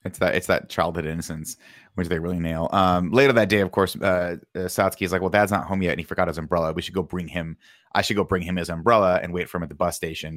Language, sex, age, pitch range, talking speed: English, male, 30-49, 85-95 Hz, 290 wpm